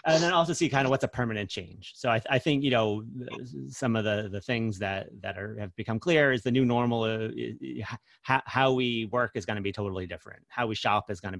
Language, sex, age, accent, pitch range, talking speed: English, male, 30-49, American, 100-120 Hz, 265 wpm